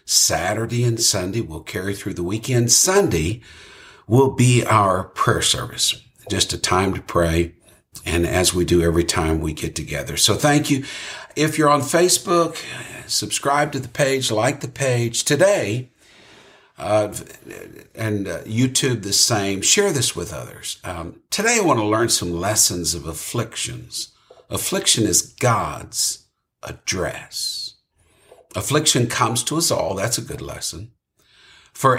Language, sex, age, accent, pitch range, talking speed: English, male, 60-79, American, 90-130 Hz, 145 wpm